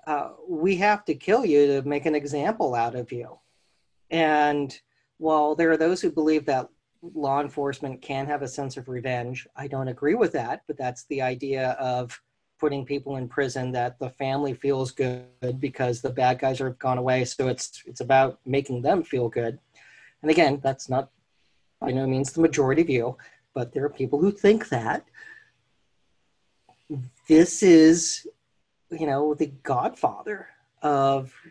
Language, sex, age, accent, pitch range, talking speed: English, male, 40-59, American, 130-160 Hz, 165 wpm